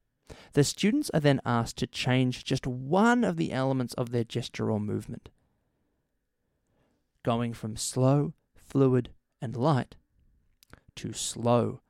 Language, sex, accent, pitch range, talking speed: English, male, Australian, 115-145 Hz, 125 wpm